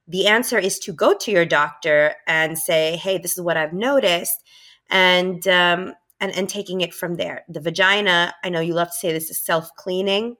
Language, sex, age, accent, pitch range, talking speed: English, female, 30-49, American, 165-195 Hz, 200 wpm